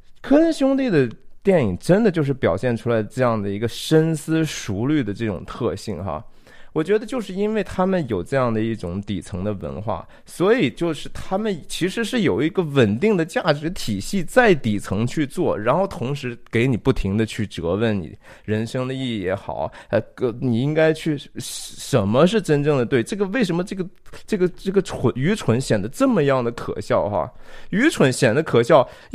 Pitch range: 115-190 Hz